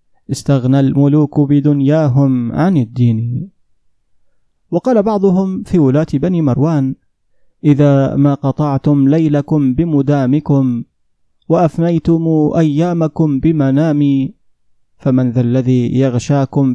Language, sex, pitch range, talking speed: Arabic, male, 130-160 Hz, 80 wpm